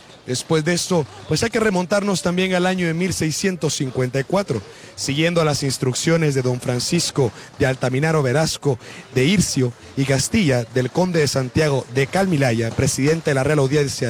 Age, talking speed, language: 40-59, 155 wpm, Spanish